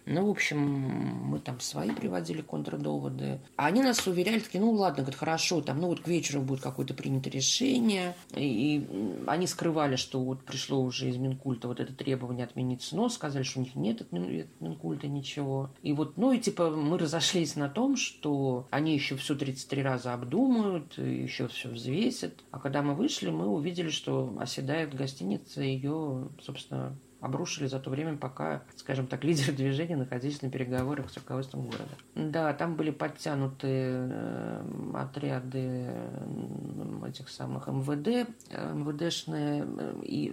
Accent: native